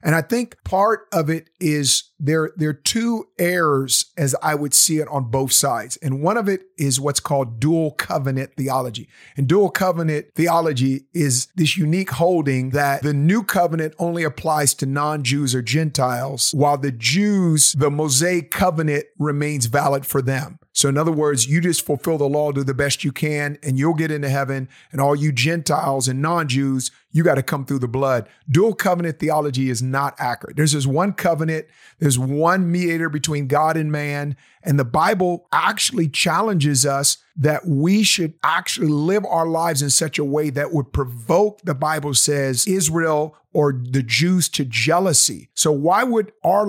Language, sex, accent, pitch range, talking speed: English, male, American, 140-170 Hz, 180 wpm